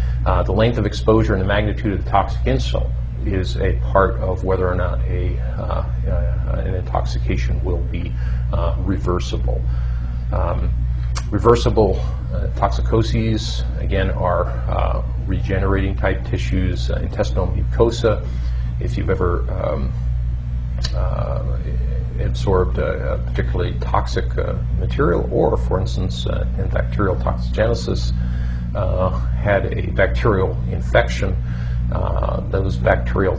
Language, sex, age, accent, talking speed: English, male, 40-59, American, 120 wpm